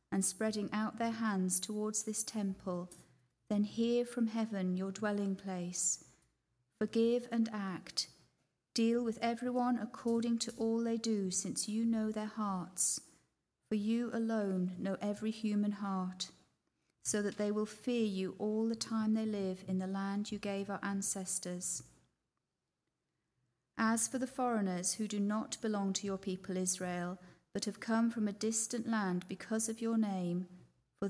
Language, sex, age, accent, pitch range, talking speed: English, female, 40-59, British, 180-220 Hz, 155 wpm